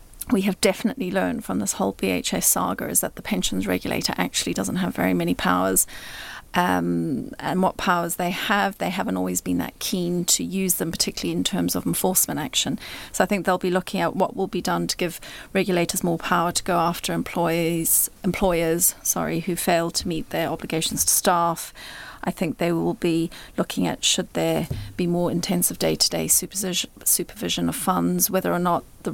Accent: British